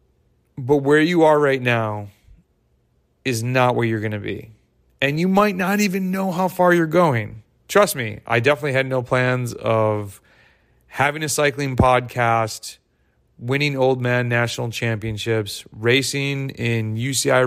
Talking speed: 150 wpm